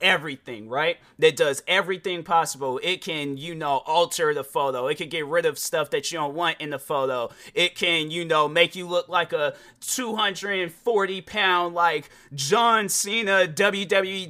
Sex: male